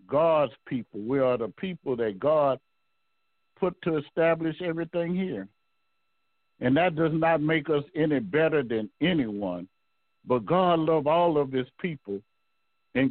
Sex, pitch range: male, 125-155 Hz